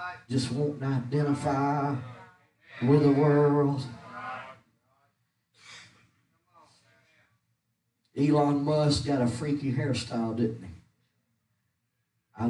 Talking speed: 70 wpm